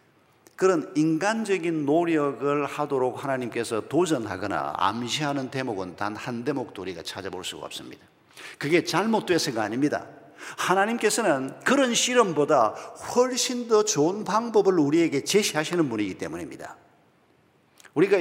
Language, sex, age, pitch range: Korean, male, 50-69, 150-220 Hz